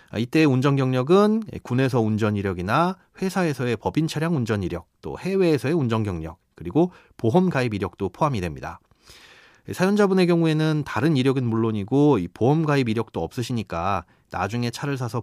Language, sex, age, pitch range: Korean, male, 30-49, 110-160 Hz